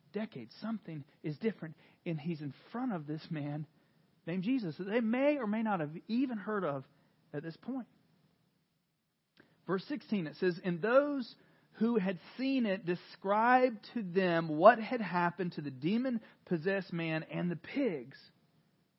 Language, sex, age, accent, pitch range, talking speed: English, male, 40-59, American, 145-190 Hz, 155 wpm